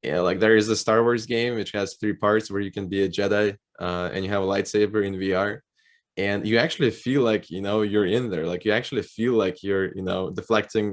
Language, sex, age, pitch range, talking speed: English, male, 10-29, 95-110 Hz, 245 wpm